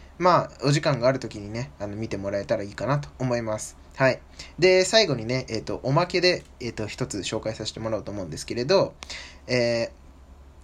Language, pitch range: Japanese, 105-165 Hz